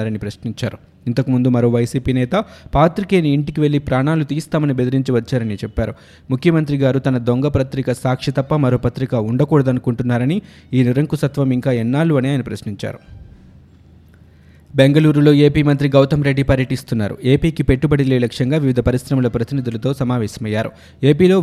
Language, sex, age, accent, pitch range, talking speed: Telugu, male, 20-39, native, 120-145 Hz, 125 wpm